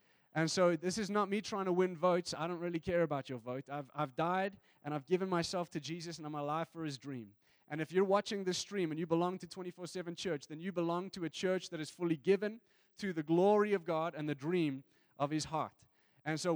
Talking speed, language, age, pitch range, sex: 245 wpm, English, 20-39, 140-180 Hz, male